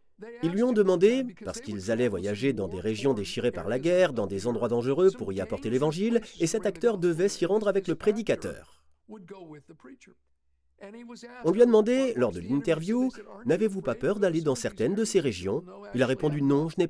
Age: 40-59